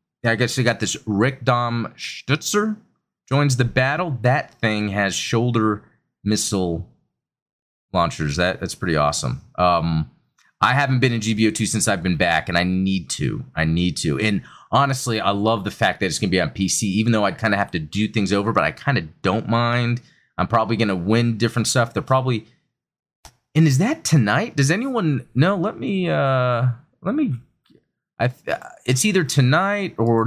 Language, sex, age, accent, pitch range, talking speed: English, male, 30-49, American, 95-130 Hz, 190 wpm